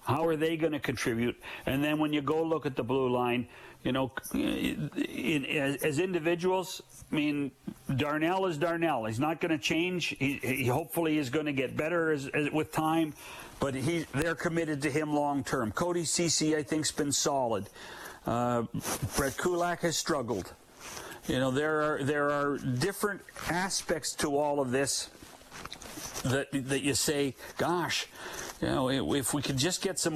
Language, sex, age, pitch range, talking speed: English, male, 60-79, 140-165 Hz, 165 wpm